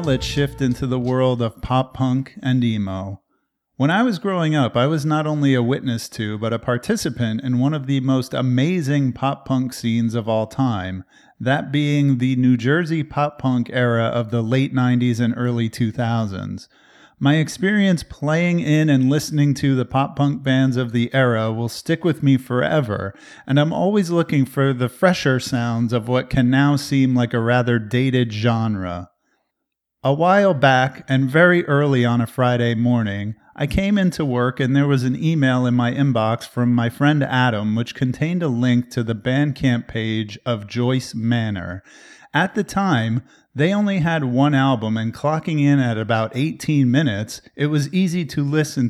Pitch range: 120-145 Hz